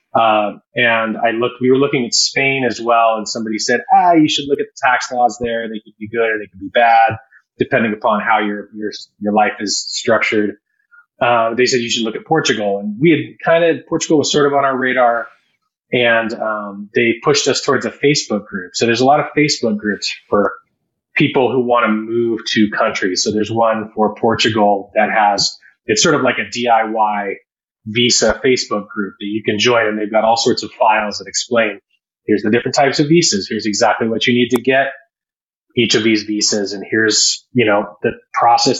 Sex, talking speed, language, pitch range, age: male, 210 wpm, English, 105-135 Hz, 30-49